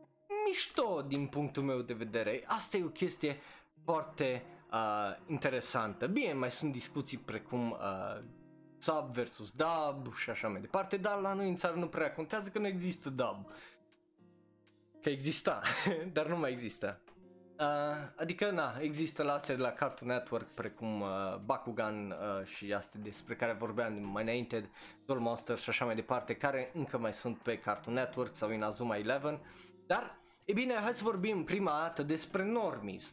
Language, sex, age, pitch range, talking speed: Romanian, male, 20-39, 115-180 Hz, 165 wpm